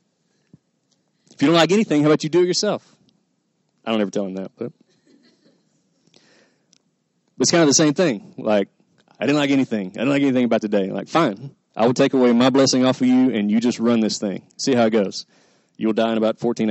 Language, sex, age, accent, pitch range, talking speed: English, male, 30-49, American, 110-130 Hz, 220 wpm